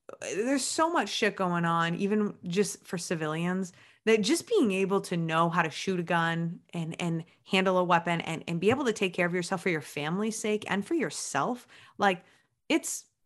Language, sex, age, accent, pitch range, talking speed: English, female, 20-39, American, 175-215 Hz, 200 wpm